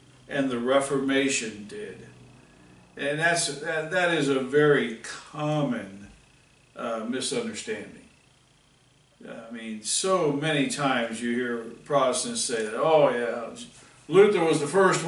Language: English